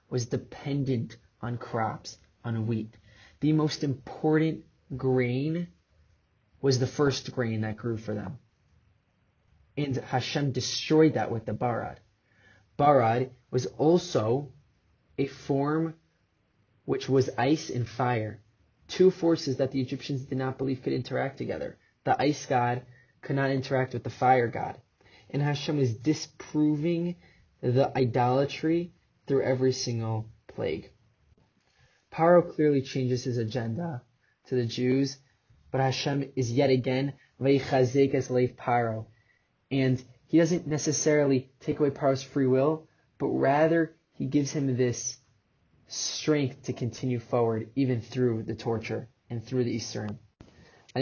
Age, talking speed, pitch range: 20-39, 125 wpm, 115-140 Hz